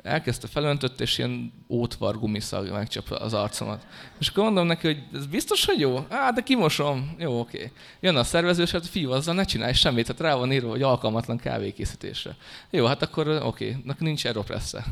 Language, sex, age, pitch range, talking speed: Hungarian, male, 20-39, 115-145 Hz, 180 wpm